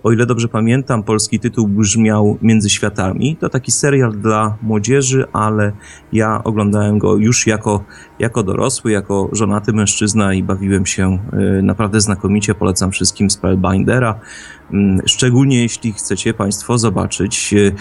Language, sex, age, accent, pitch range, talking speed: Polish, male, 30-49, native, 105-120 Hz, 130 wpm